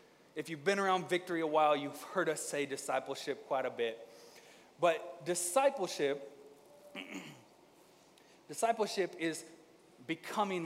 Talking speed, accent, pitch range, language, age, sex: 115 wpm, American, 160-215 Hz, English, 30-49, male